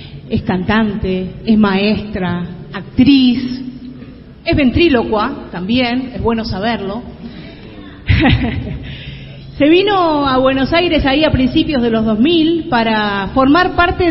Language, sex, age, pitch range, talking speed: Spanish, female, 40-59, 190-250 Hz, 105 wpm